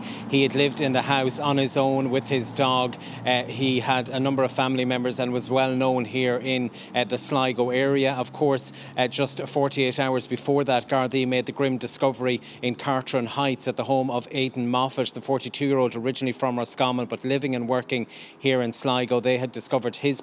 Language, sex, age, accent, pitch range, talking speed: English, male, 30-49, Irish, 125-135 Hz, 210 wpm